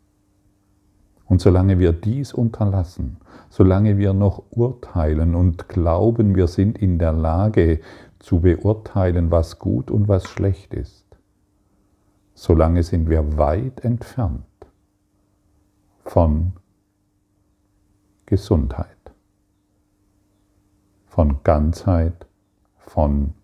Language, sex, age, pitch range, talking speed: German, male, 50-69, 85-100 Hz, 85 wpm